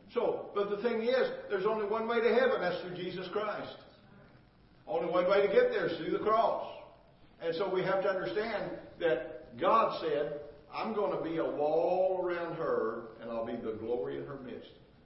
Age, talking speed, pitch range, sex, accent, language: 50-69, 200 wpm, 130-210 Hz, male, American, English